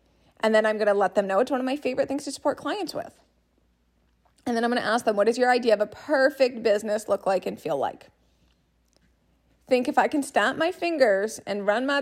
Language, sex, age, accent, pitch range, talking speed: English, female, 20-39, American, 205-270 Hz, 240 wpm